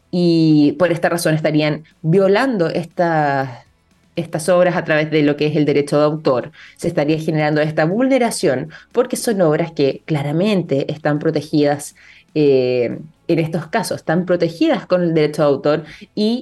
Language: Spanish